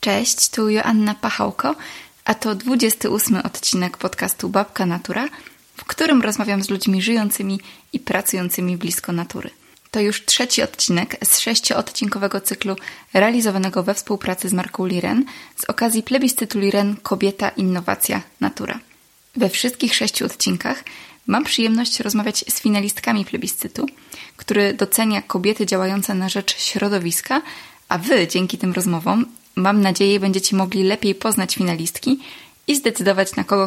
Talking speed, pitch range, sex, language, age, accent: 135 wpm, 190-230 Hz, female, Polish, 20-39, native